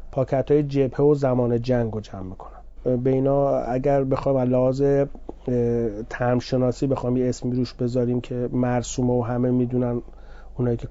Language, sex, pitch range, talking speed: Persian, male, 125-140 Hz, 140 wpm